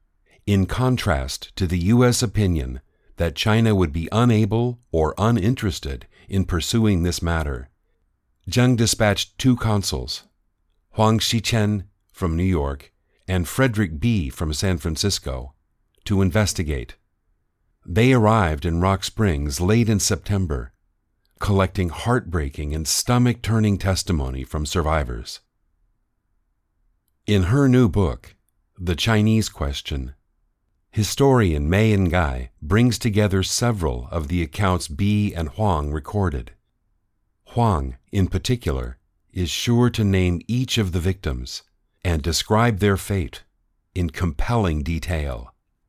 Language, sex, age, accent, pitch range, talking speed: English, male, 50-69, American, 80-110 Hz, 115 wpm